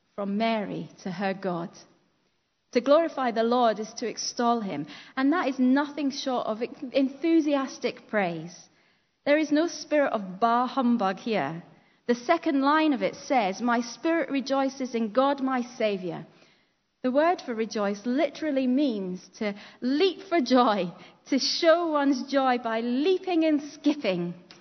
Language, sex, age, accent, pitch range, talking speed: English, female, 30-49, British, 195-270 Hz, 145 wpm